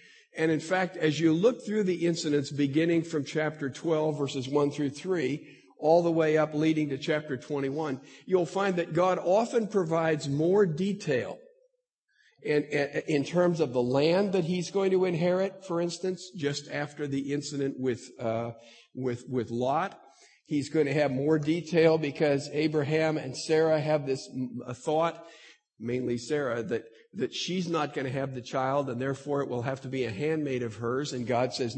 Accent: American